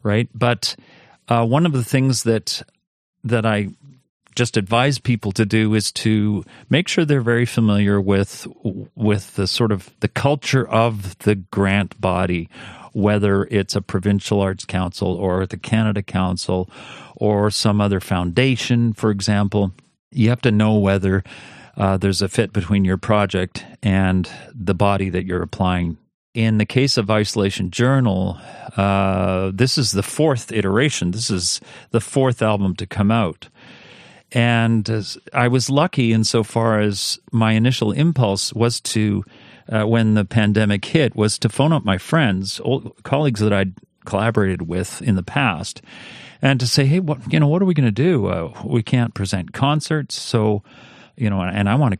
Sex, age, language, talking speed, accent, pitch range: male, 40-59, English, 165 wpm, American, 100-120 Hz